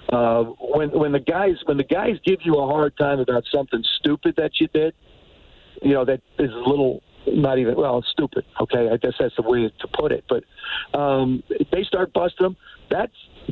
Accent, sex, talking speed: American, male, 205 wpm